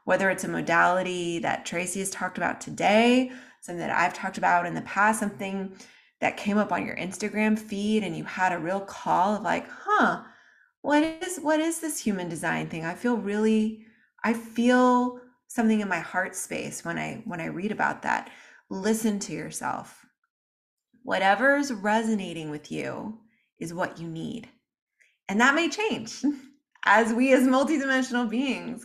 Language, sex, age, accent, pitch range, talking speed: English, female, 20-39, American, 185-245 Hz, 165 wpm